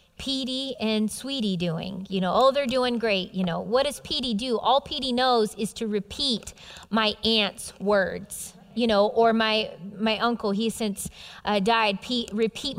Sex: female